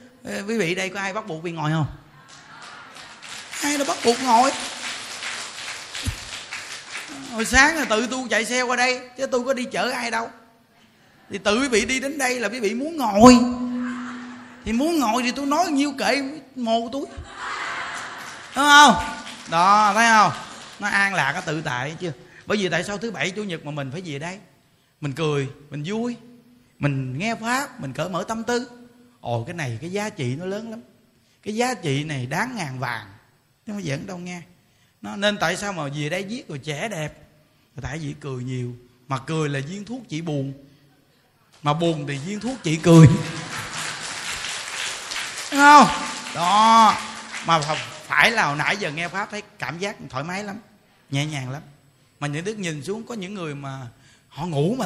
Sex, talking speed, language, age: male, 185 wpm, Vietnamese, 20-39